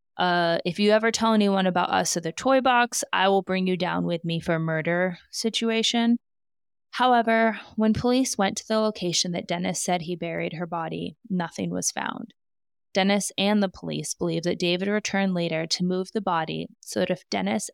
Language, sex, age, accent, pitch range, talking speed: English, female, 20-39, American, 170-210 Hz, 190 wpm